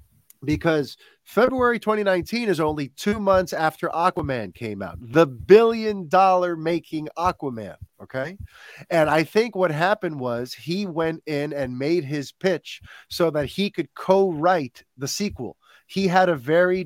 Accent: American